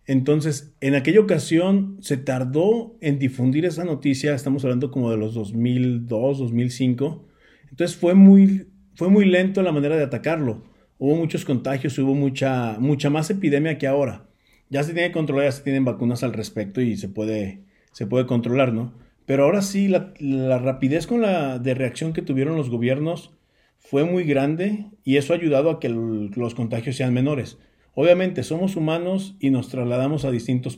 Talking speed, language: 175 wpm, Spanish